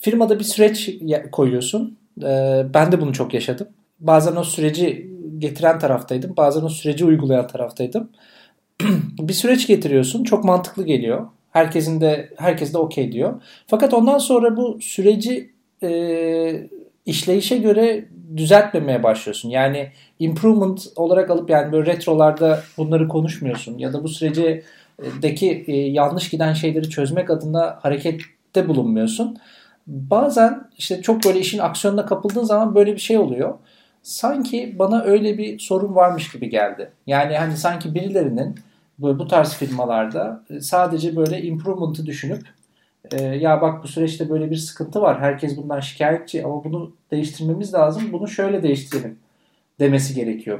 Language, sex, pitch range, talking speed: Turkish, male, 145-195 Hz, 135 wpm